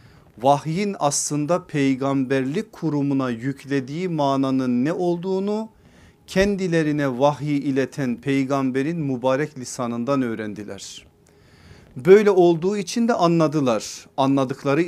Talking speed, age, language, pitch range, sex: 85 wpm, 40-59, Turkish, 125-155 Hz, male